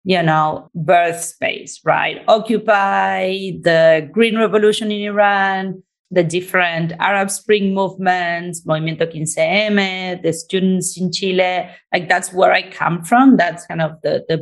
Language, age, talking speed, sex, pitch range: English, 30-49, 135 wpm, female, 165-195 Hz